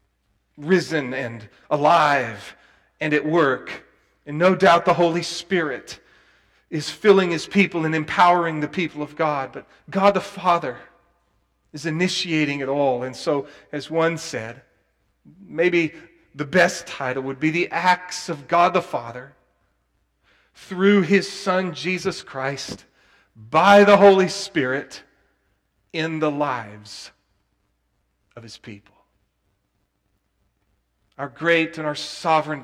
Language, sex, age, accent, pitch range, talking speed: English, male, 40-59, American, 100-165 Hz, 125 wpm